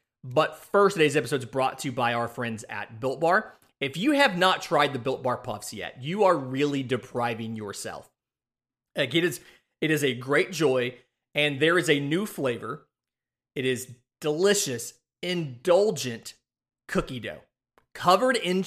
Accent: American